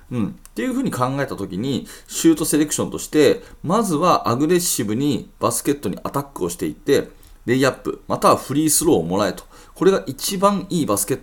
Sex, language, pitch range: male, Japanese, 120-175 Hz